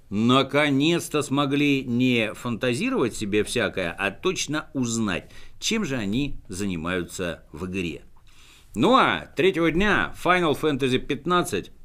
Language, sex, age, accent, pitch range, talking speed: Russian, male, 60-79, native, 95-145 Hz, 110 wpm